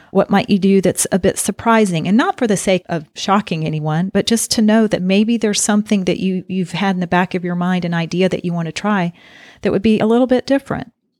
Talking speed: 255 wpm